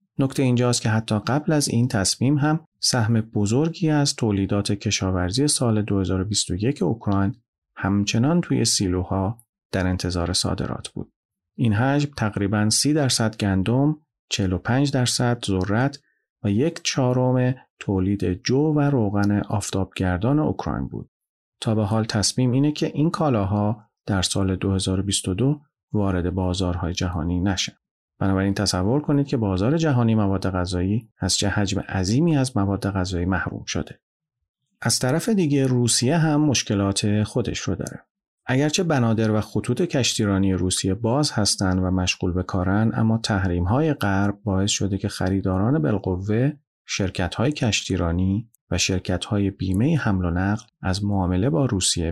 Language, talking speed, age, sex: Persian, 135 wpm, 40-59, male